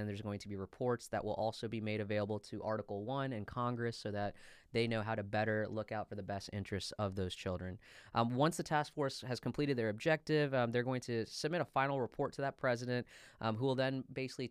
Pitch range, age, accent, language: 105-130 Hz, 20-39, American, English